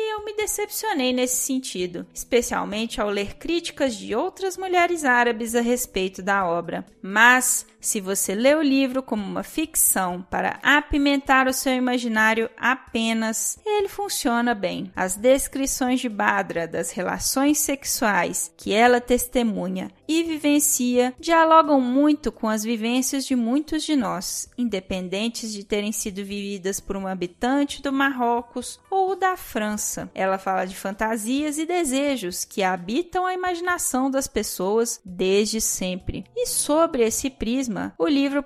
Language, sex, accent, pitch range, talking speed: Portuguese, female, Brazilian, 210-285 Hz, 140 wpm